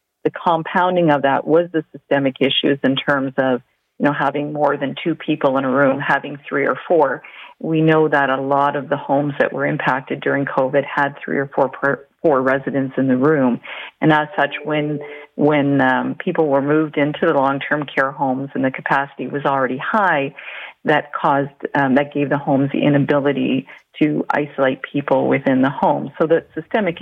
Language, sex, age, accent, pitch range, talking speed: English, female, 40-59, American, 135-150 Hz, 195 wpm